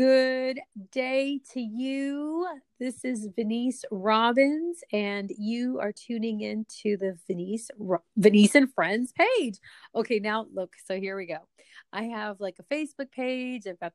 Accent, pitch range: American, 195-260 Hz